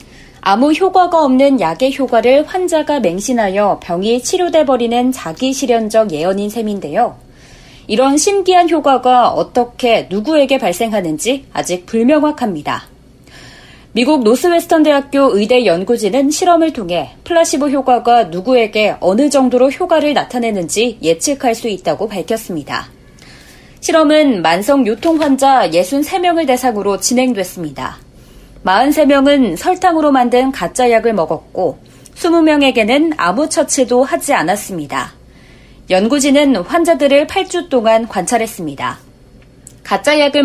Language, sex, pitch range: Korean, female, 215-290 Hz